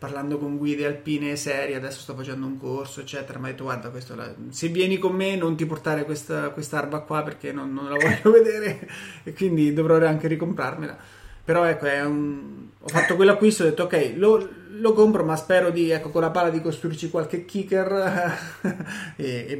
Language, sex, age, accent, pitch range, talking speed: Italian, male, 30-49, native, 140-160 Hz, 195 wpm